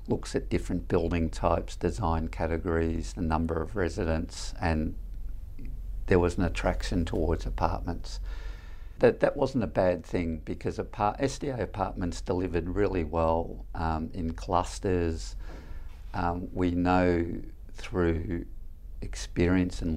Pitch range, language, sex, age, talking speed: 85-95 Hz, English, male, 50-69, 120 wpm